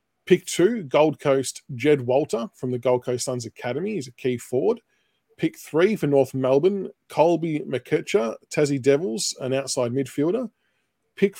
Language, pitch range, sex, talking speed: English, 125-155 Hz, male, 155 wpm